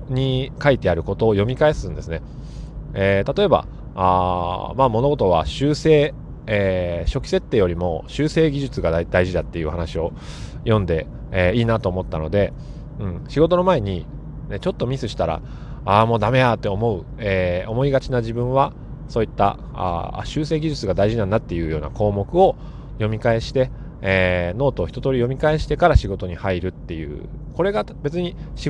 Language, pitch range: Japanese, 95-145 Hz